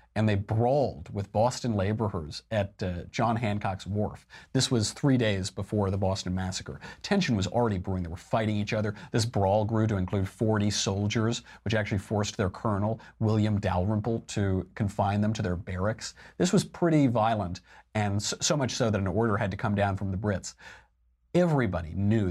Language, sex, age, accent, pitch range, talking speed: English, male, 40-59, American, 95-115 Hz, 185 wpm